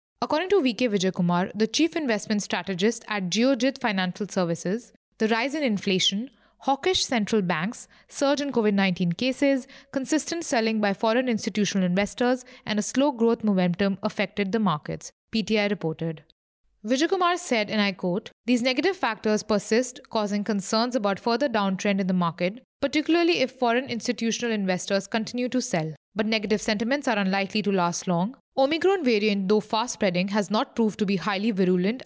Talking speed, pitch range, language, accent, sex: 155 wpm, 195-250 Hz, English, Indian, female